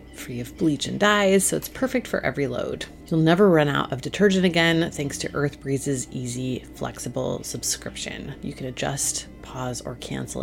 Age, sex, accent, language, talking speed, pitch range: 30-49, female, American, English, 180 wpm, 135-185 Hz